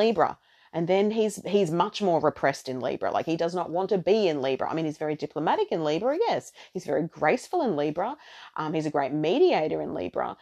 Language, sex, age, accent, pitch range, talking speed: English, female, 40-59, Australian, 155-210 Hz, 225 wpm